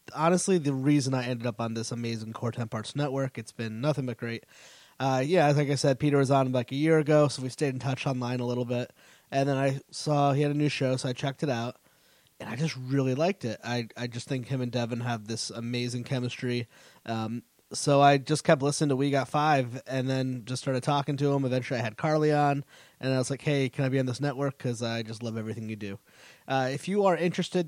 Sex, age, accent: male, 20-39, American